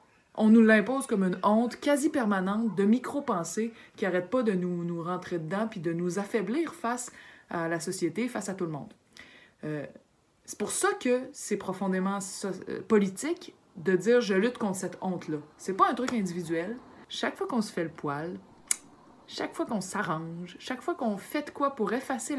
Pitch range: 170-220 Hz